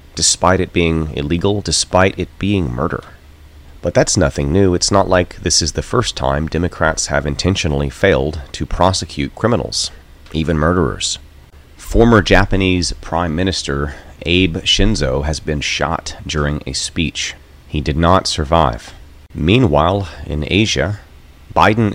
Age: 30-49